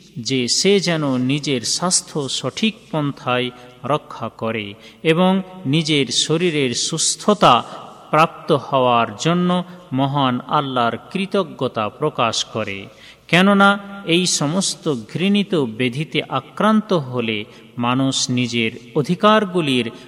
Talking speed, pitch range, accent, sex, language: 90 wpm, 125-180 Hz, native, male, Bengali